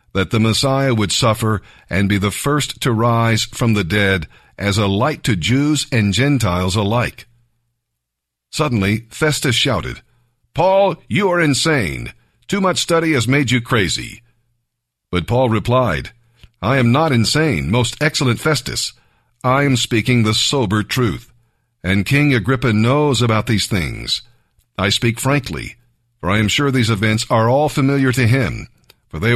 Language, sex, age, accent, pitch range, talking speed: English, male, 50-69, American, 110-135 Hz, 155 wpm